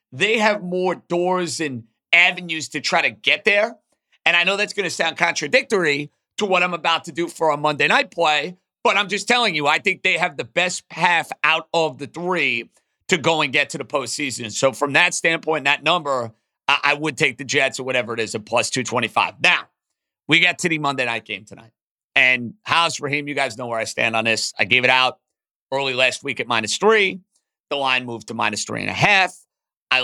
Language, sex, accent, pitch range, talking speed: English, male, American, 135-185 Hz, 220 wpm